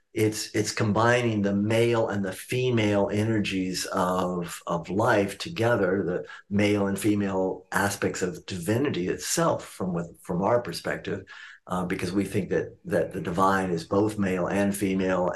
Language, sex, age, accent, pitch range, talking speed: English, male, 50-69, American, 95-110 Hz, 150 wpm